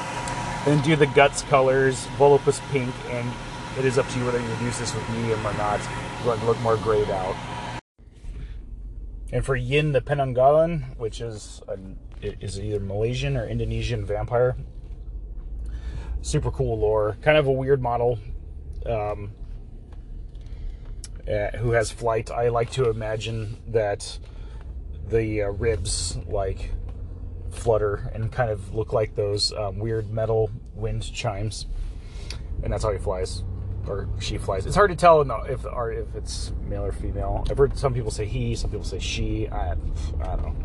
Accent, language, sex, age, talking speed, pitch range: American, English, male, 30-49, 160 wpm, 95-125 Hz